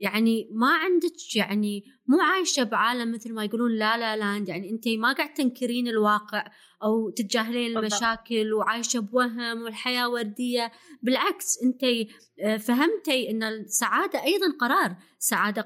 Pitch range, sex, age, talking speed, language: 205-255 Hz, female, 20-39, 130 wpm, Arabic